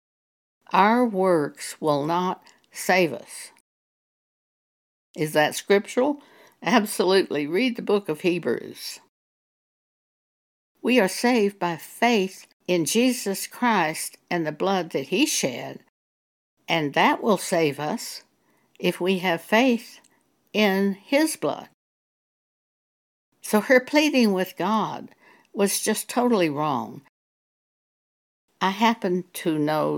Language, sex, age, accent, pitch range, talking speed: English, female, 60-79, American, 160-235 Hz, 110 wpm